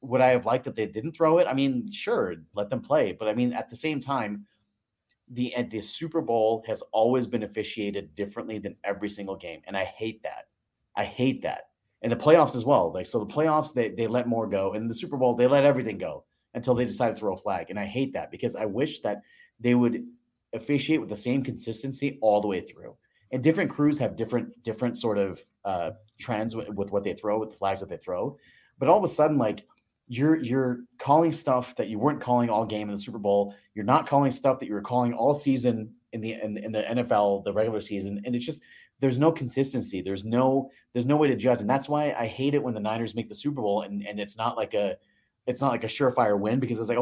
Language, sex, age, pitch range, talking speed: English, male, 30-49, 105-135 Hz, 245 wpm